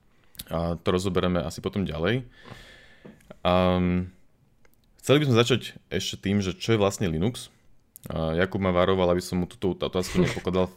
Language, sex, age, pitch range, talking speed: Slovak, male, 20-39, 85-105 Hz, 155 wpm